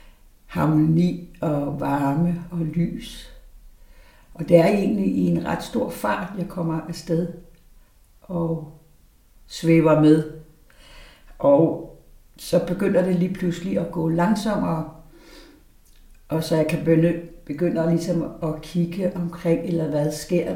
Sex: female